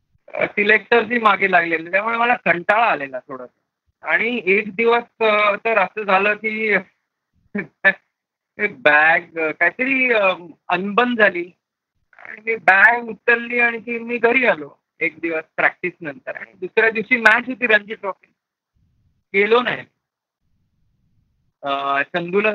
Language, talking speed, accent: Marathi, 110 wpm, native